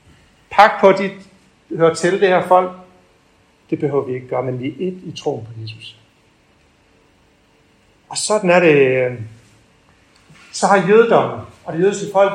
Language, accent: Danish, native